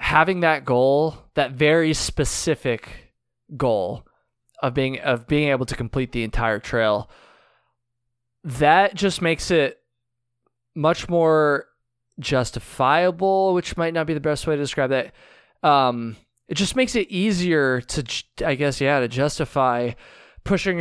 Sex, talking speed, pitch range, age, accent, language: male, 135 wpm, 120-155 Hz, 20-39, American, English